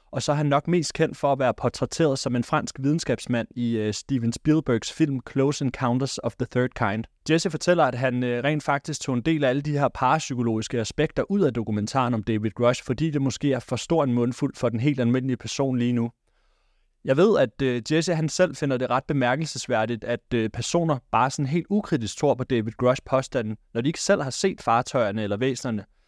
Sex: male